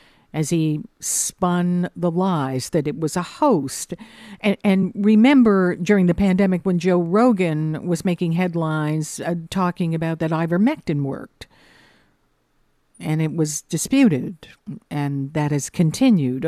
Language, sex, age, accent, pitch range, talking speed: English, female, 50-69, American, 155-200 Hz, 130 wpm